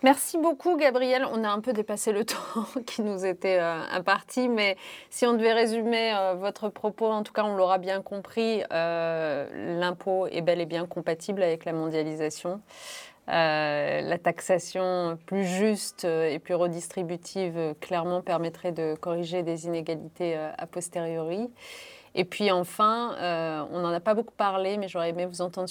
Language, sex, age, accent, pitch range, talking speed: French, female, 20-39, French, 170-205 Hz, 160 wpm